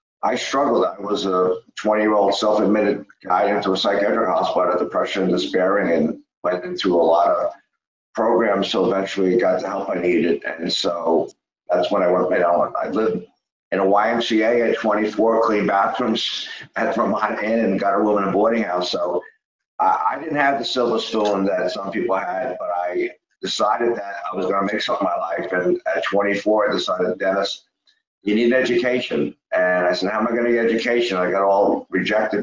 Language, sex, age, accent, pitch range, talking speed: English, male, 50-69, American, 95-115 Hz, 200 wpm